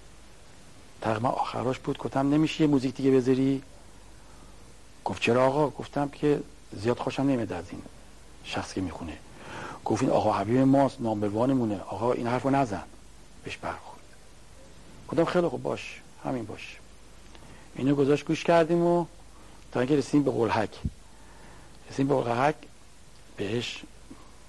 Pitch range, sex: 110-145 Hz, male